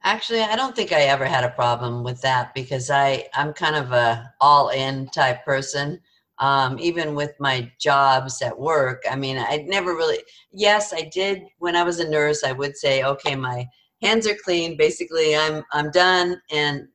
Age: 50-69